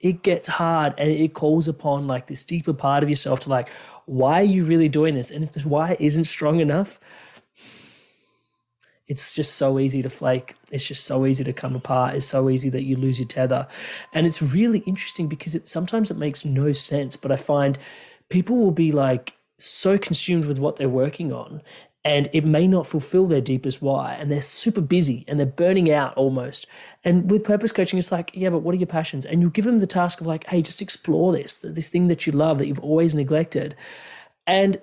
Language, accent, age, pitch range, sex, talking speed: English, Australian, 20-39, 140-180 Hz, male, 215 wpm